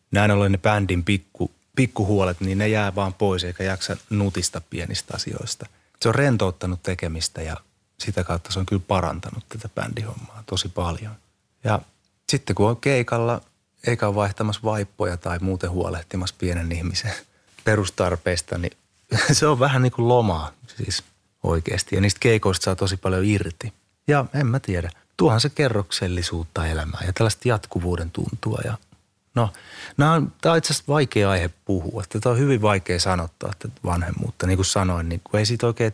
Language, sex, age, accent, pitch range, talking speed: Finnish, male, 30-49, native, 90-110 Hz, 160 wpm